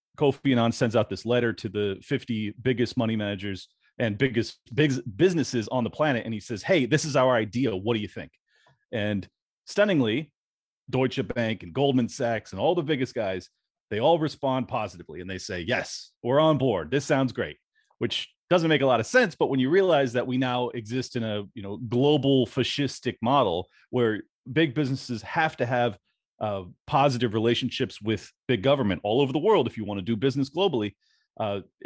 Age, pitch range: 30-49, 110-140 Hz